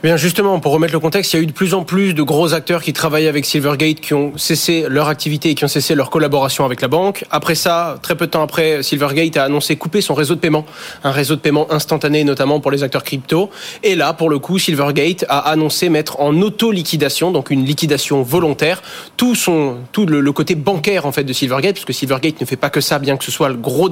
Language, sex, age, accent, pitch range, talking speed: French, male, 20-39, French, 140-170 Hz, 245 wpm